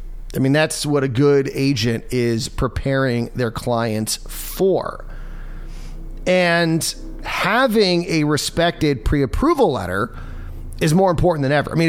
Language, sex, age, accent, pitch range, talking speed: English, male, 30-49, American, 125-165 Hz, 125 wpm